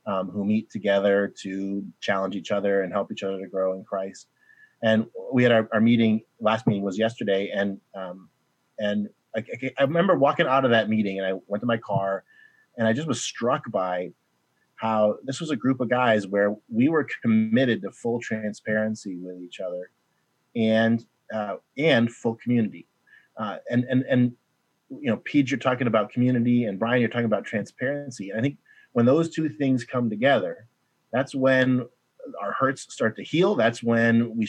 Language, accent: English, American